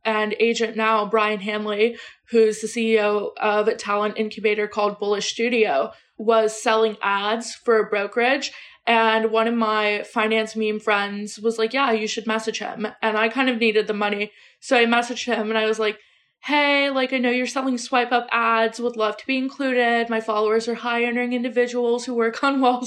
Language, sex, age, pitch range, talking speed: English, female, 20-39, 215-240 Hz, 190 wpm